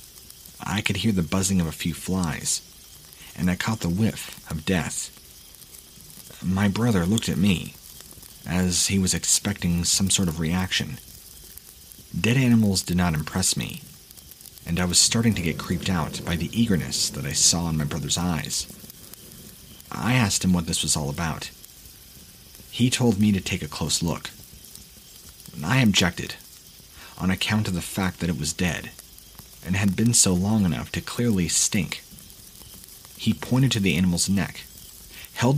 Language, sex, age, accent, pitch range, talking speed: English, male, 40-59, American, 85-105 Hz, 160 wpm